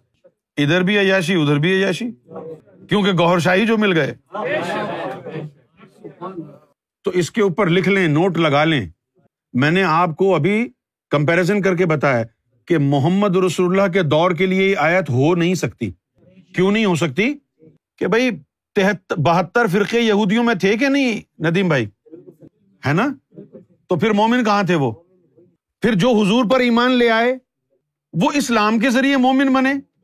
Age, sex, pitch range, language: 50-69, male, 175-245 Hz, Urdu